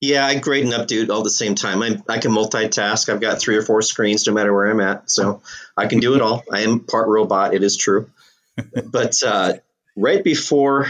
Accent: American